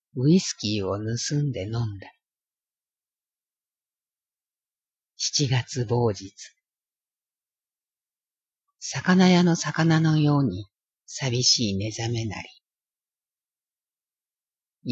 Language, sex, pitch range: Japanese, female, 105-135 Hz